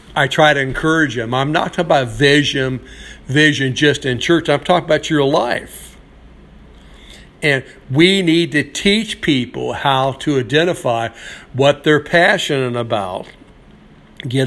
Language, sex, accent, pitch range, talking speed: English, male, American, 130-150 Hz, 135 wpm